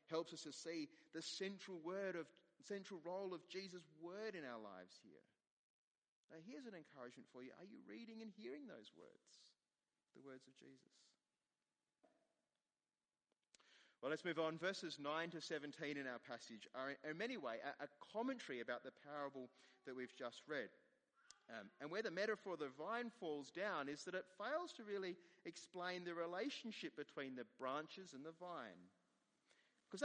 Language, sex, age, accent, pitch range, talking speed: English, male, 30-49, Australian, 130-195 Hz, 170 wpm